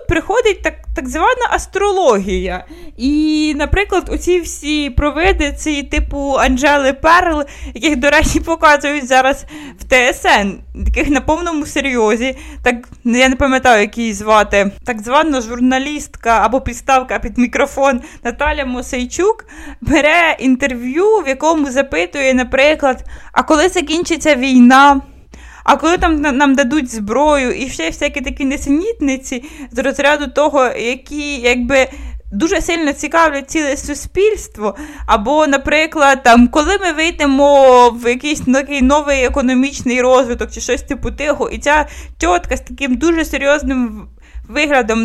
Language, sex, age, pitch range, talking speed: Ukrainian, female, 20-39, 260-315 Hz, 125 wpm